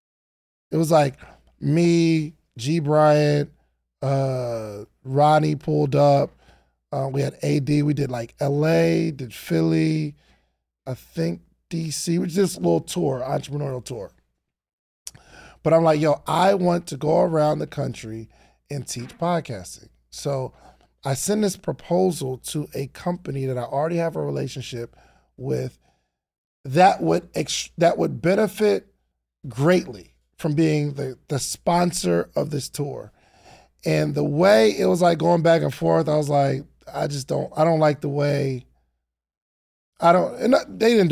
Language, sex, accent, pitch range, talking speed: English, male, American, 115-165 Hz, 145 wpm